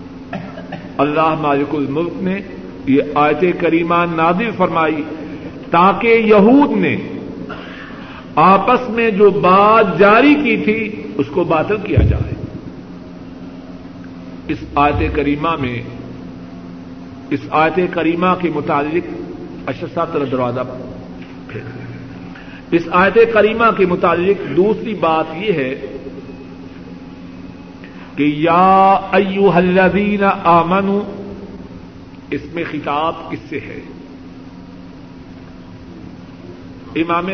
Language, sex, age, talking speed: Urdu, male, 50-69, 85 wpm